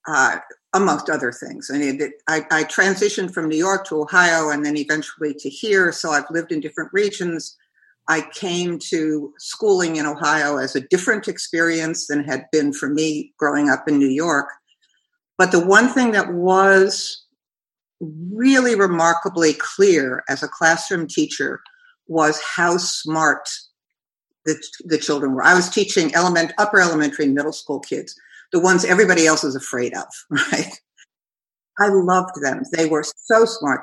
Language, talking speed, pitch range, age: English, 155 wpm, 150-190 Hz, 60-79